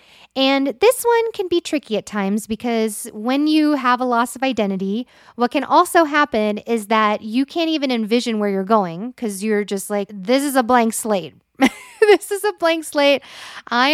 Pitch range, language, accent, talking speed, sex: 205-265 Hz, English, American, 190 wpm, female